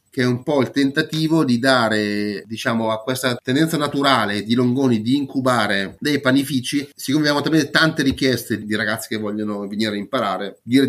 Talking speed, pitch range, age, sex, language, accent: 170 wpm, 110-130 Hz, 30-49, male, Italian, native